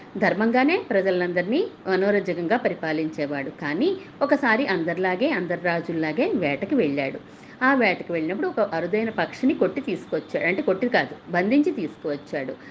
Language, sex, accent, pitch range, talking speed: Telugu, female, native, 160-240 Hz, 115 wpm